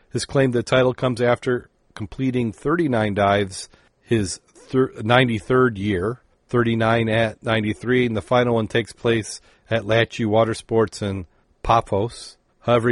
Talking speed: 130 wpm